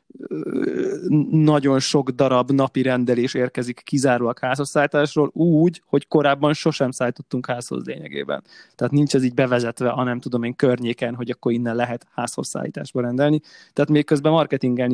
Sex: male